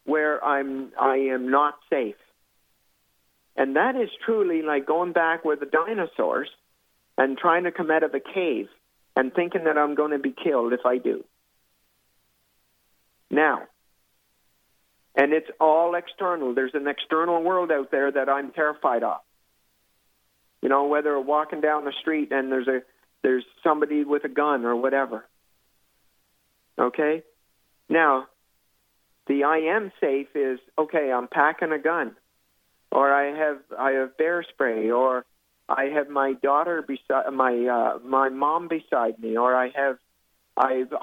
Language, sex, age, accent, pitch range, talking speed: English, male, 50-69, American, 130-160 Hz, 150 wpm